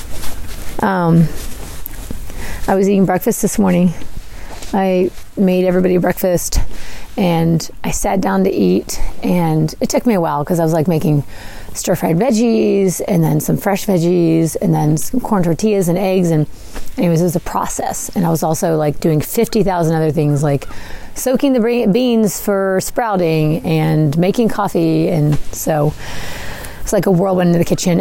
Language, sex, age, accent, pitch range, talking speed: English, female, 30-49, American, 155-200 Hz, 165 wpm